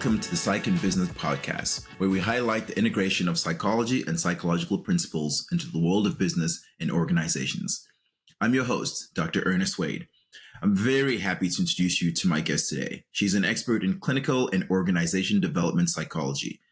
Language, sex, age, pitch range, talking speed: English, male, 30-49, 90-120 Hz, 175 wpm